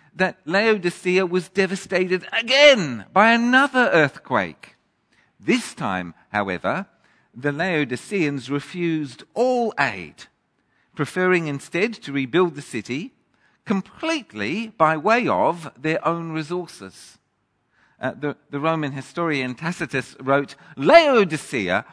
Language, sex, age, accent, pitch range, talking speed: English, male, 50-69, British, 145-195 Hz, 100 wpm